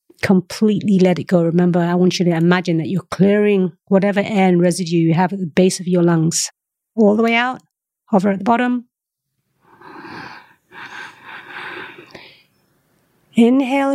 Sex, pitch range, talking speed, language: female, 175-215 Hz, 145 wpm, English